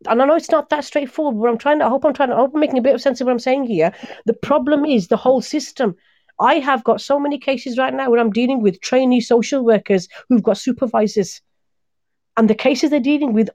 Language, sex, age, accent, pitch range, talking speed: English, female, 40-59, British, 225-270 Hz, 260 wpm